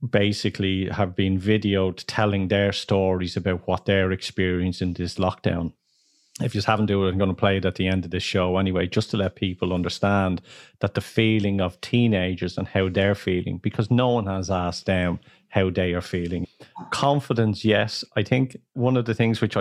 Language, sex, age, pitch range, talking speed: English, male, 30-49, 95-120 Hz, 195 wpm